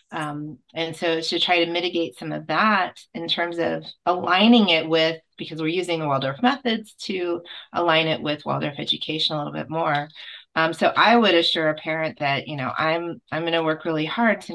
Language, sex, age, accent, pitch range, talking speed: English, female, 30-49, American, 150-175 Hz, 205 wpm